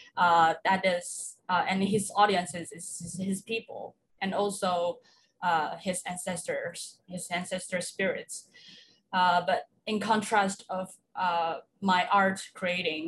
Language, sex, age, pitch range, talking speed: English, female, 20-39, 175-205 Hz, 130 wpm